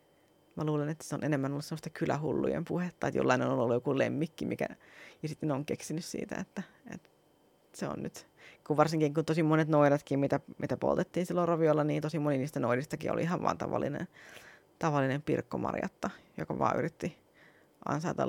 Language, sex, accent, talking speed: Finnish, female, native, 175 wpm